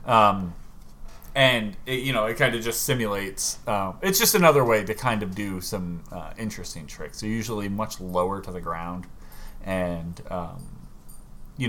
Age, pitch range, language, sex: 30-49, 90-125 Hz, English, male